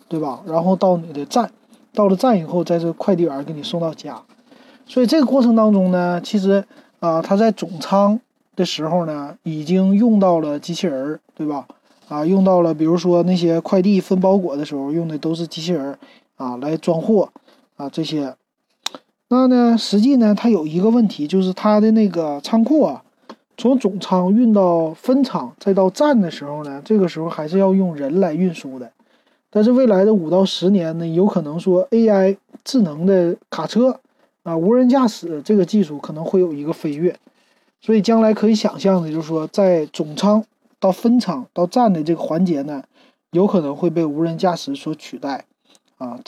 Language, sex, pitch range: Chinese, male, 165-225 Hz